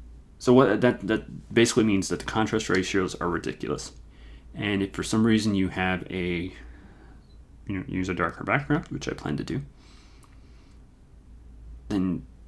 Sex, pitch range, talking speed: male, 70-100 Hz, 160 wpm